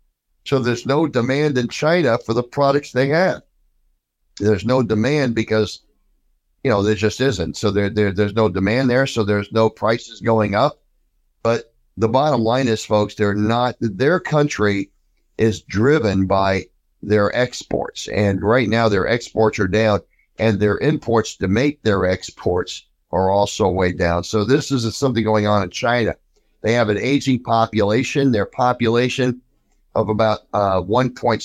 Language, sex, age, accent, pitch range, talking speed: English, male, 50-69, American, 95-120 Hz, 155 wpm